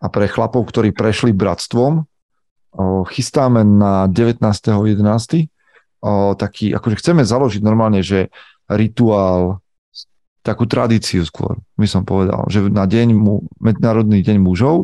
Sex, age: male, 30-49